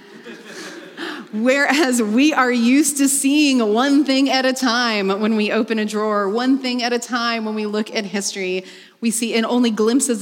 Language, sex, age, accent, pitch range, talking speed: English, female, 30-49, American, 185-240 Hz, 180 wpm